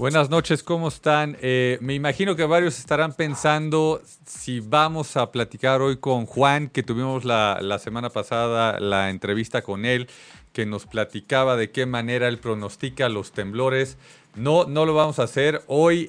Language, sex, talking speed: Spanish, male, 170 wpm